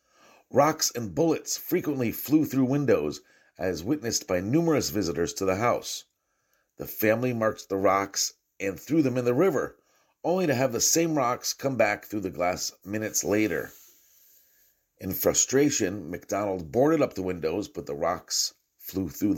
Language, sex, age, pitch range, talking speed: English, male, 50-69, 95-120 Hz, 160 wpm